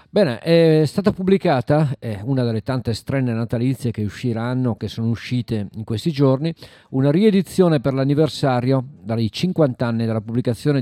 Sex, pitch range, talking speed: male, 110-140 Hz, 150 wpm